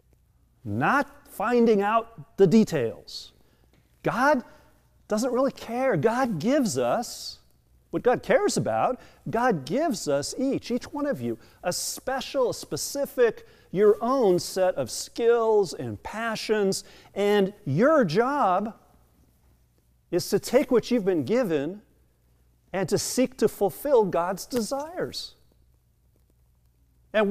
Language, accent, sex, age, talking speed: English, American, male, 40-59, 115 wpm